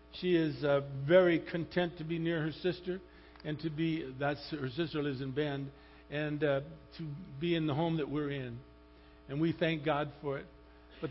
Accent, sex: American, male